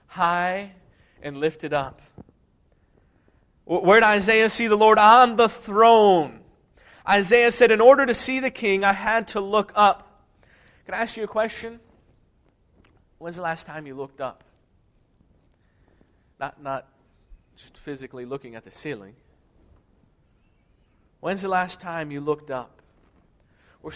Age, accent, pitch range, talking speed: 30-49, American, 165-220 Hz, 140 wpm